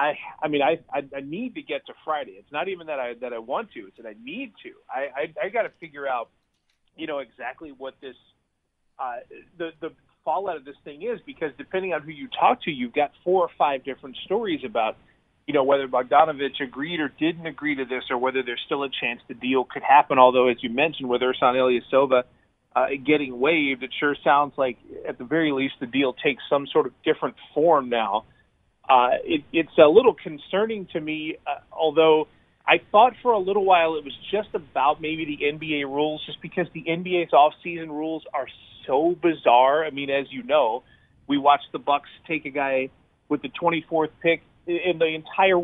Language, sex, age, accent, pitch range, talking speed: English, male, 30-49, American, 140-180 Hz, 210 wpm